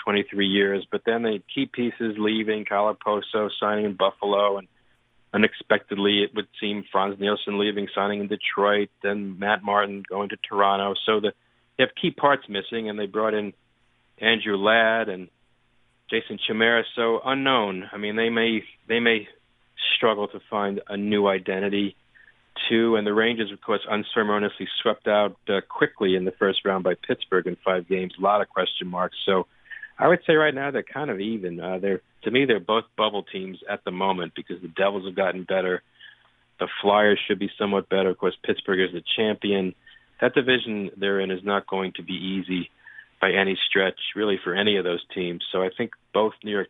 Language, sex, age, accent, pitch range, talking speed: English, male, 40-59, American, 95-105 Hz, 190 wpm